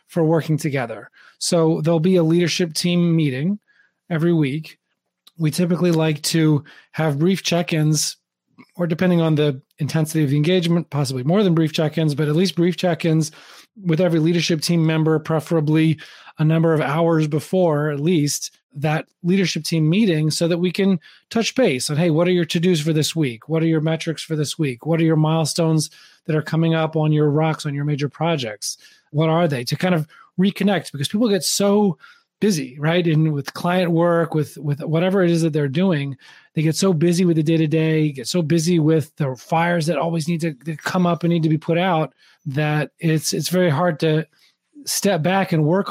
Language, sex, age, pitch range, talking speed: English, male, 30-49, 155-175 Hz, 200 wpm